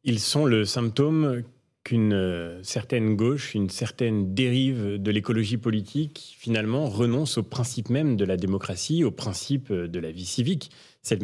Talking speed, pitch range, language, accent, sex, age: 150 wpm, 100-125 Hz, French, French, male, 30-49